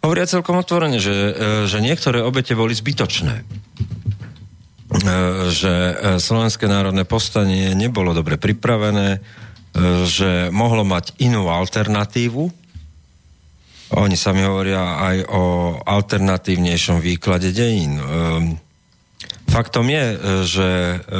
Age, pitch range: 40-59, 90-105 Hz